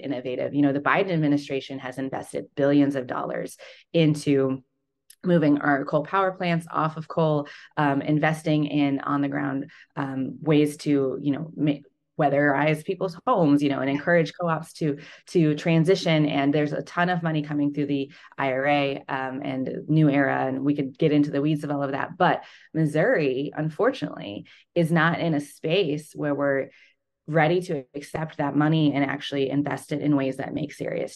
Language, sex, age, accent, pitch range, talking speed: English, female, 20-39, American, 135-155 Hz, 180 wpm